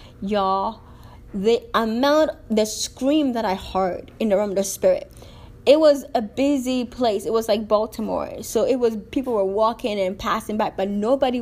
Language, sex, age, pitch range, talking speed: English, female, 20-39, 200-245 Hz, 175 wpm